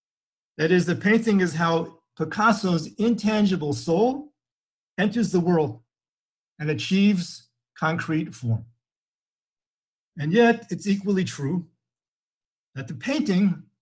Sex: male